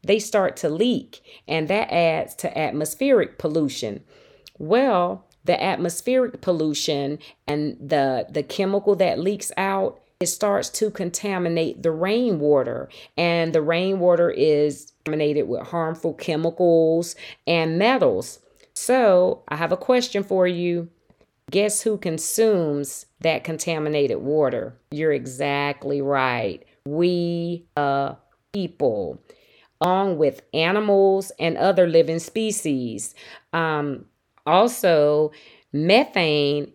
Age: 40-59